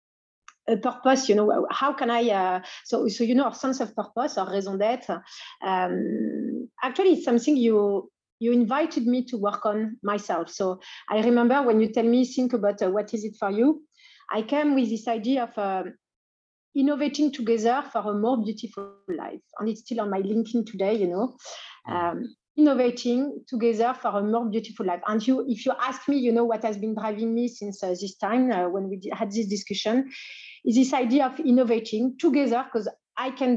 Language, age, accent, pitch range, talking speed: English, 40-59, French, 205-250 Hz, 195 wpm